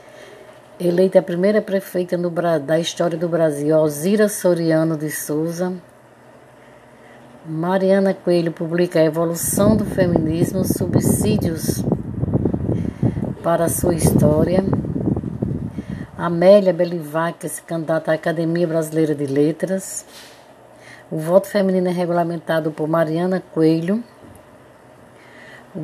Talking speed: 95 wpm